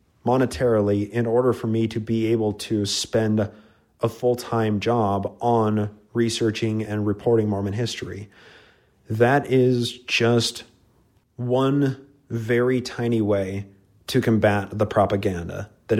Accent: American